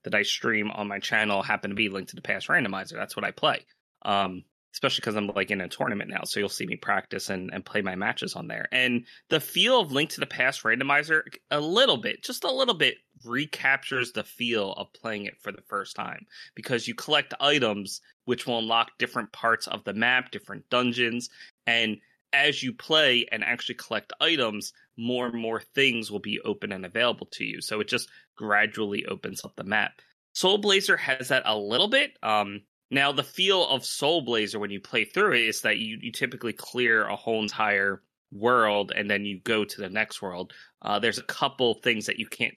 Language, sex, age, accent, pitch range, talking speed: English, male, 20-39, American, 105-135 Hz, 215 wpm